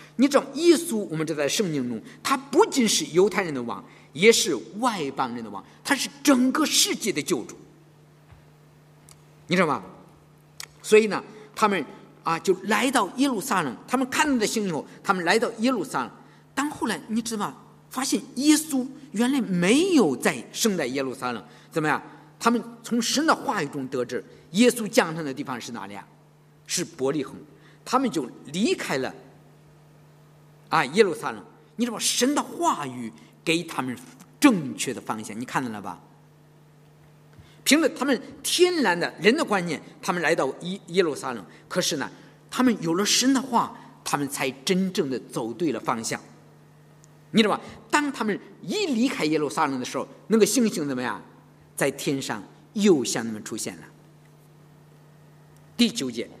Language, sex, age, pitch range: English, male, 50-69, 150-250 Hz